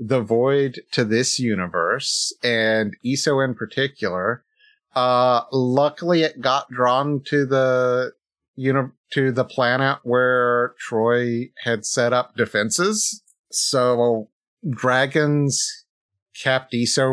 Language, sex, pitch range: English, male, 115-145 Hz